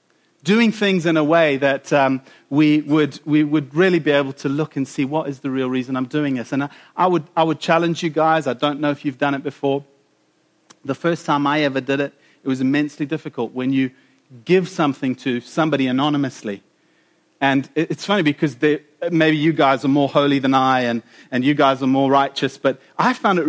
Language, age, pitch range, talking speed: English, 40-59, 140-175 Hz, 220 wpm